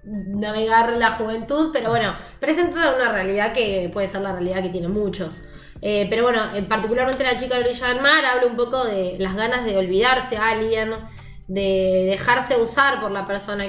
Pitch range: 190-240 Hz